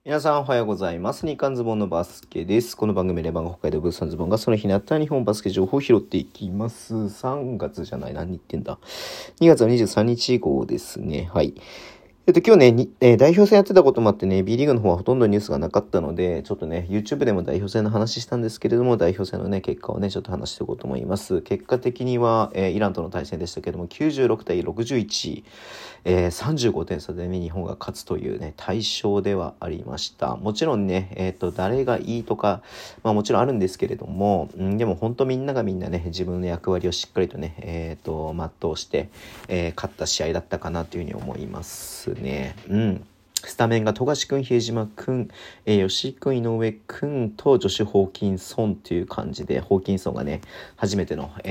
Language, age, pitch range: Japanese, 40-59, 90-115 Hz